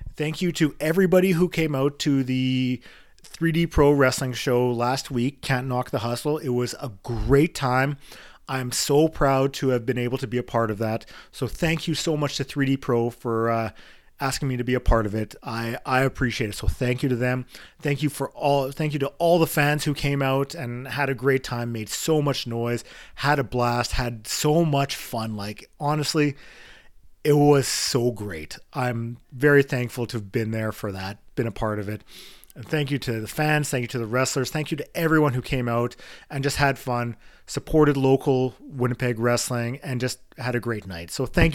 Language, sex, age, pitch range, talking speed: English, male, 30-49, 115-145 Hz, 210 wpm